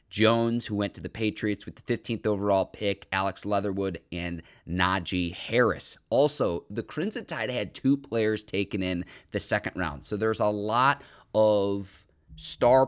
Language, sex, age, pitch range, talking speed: English, male, 30-49, 95-120 Hz, 160 wpm